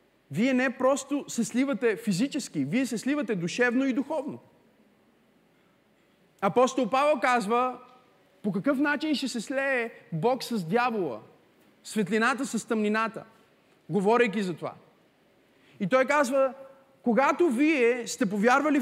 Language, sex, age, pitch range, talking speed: Bulgarian, male, 30-49, 205-260 Hz, 120 wpm